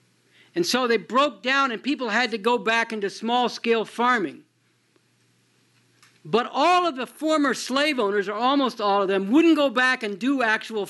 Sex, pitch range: male, 200-255 Hz